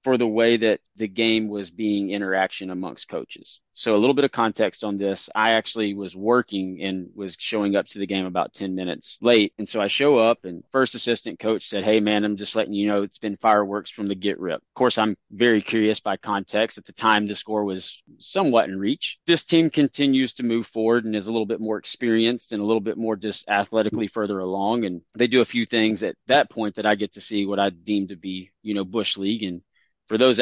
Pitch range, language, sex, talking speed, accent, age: 100-115 Hz, English, male, 240 wpm, American, 30-49